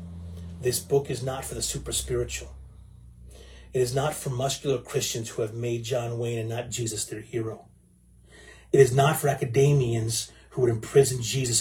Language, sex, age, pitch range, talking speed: English, male, 30-49, 115-150 Hz, 165 wpm